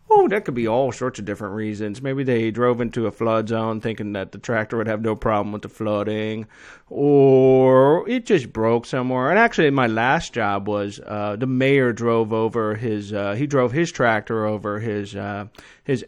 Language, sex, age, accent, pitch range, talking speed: English, male, 30-49, American, 110-150 Hz, 200 wpm